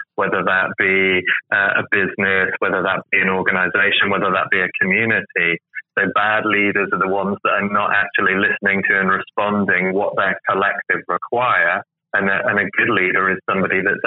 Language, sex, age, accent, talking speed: English, male, 20-39, British, 180 wpm